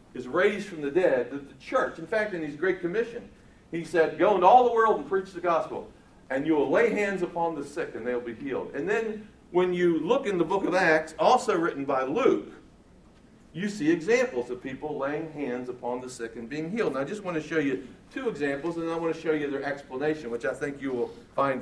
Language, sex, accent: English, male, American